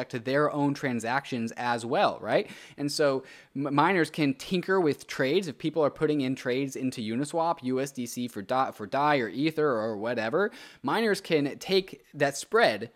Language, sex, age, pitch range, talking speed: English, male, 20-39, 120-155 Hz, 170 wpm